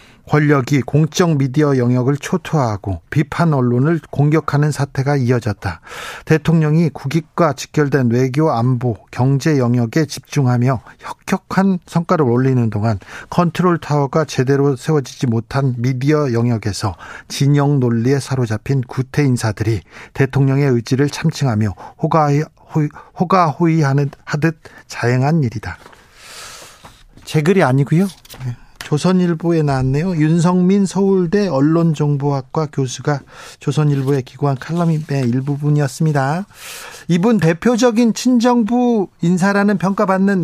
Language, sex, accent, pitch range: Korean, male, native, 130-175 Hz